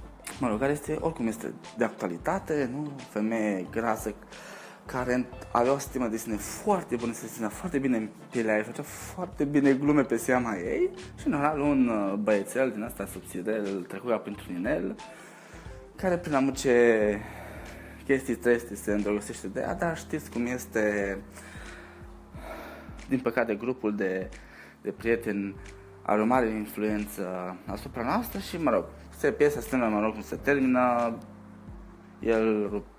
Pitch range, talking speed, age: 100-130 Hz, 145 wpm, 20-39